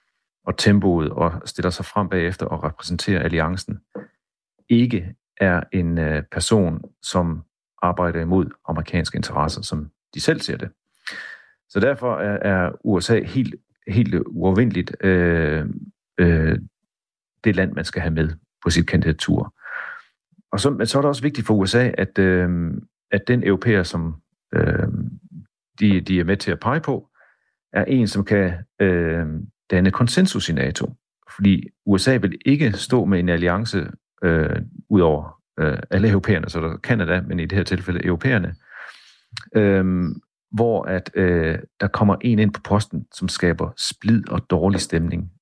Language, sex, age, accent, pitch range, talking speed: Danish, male, 40-59, native, 85-105 Hz, 155 wpm